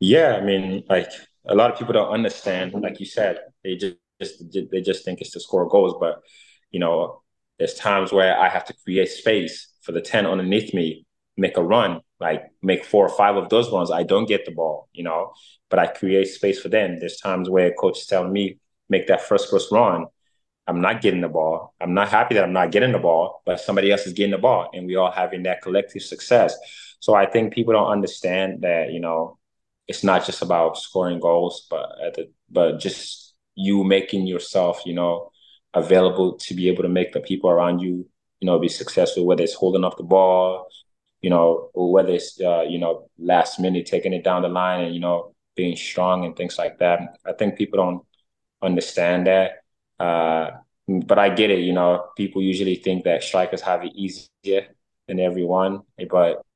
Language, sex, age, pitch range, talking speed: English, male, 20-39, 90-100 Hz, 205 wpm